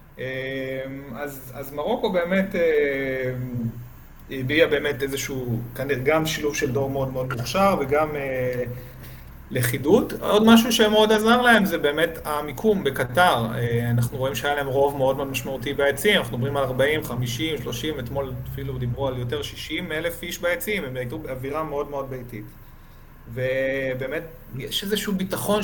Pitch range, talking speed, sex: 130-175 Hz, 150 wpm, male